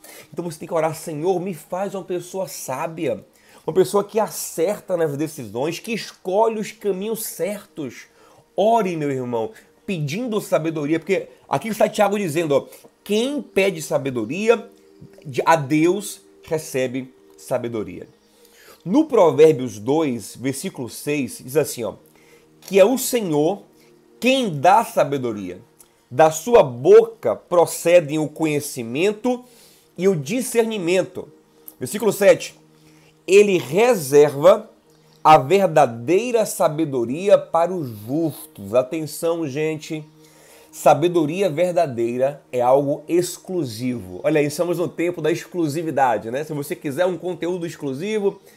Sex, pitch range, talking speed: male, 145-195 Hz, 115 wpm